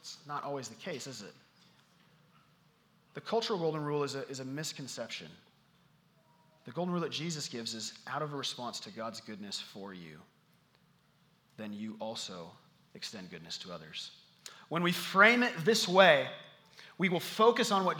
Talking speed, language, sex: 165 wpm, English, male